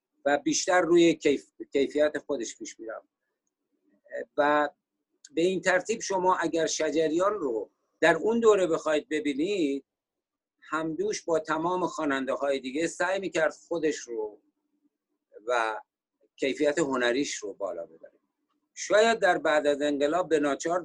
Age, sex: 50-69, male